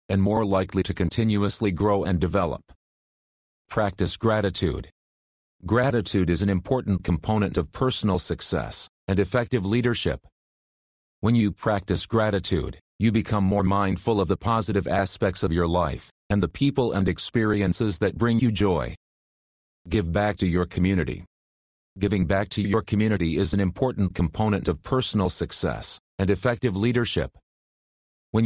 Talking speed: 140 wpm